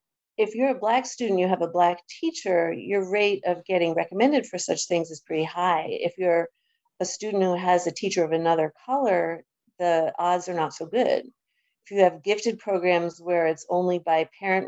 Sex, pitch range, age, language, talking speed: female, 160-190 Hz, 40-59, English, 195 wpm